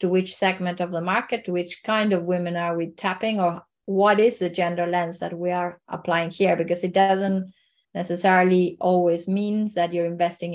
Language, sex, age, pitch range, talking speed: English, female, 30-49, 170-190 Hz, 195 wpm